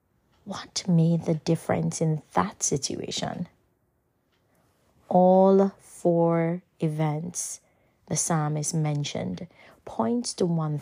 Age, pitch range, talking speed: 30-49, 160-195 Hz, 90 wpm